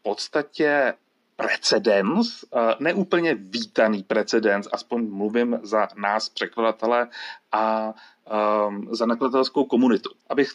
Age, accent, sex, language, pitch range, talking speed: 30-49, native, male, Czech, 110-135 Hz, 90 wpm